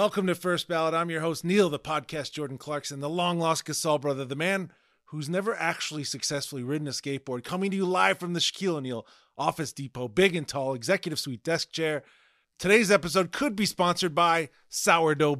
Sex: male